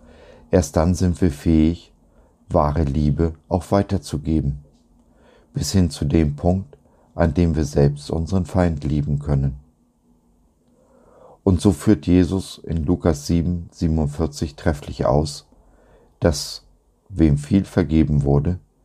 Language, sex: German, male